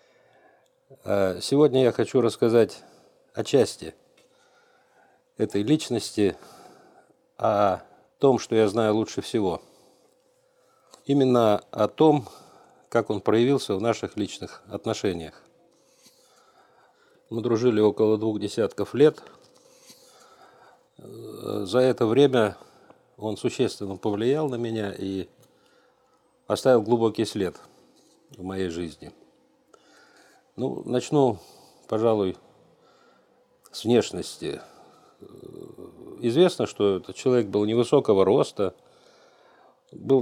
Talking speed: 90 wpm